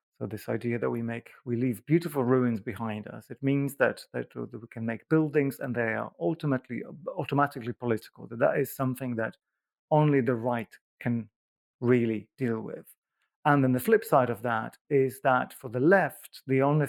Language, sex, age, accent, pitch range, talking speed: English, male, 40-59, British, 115-140 Hz, 185 wpm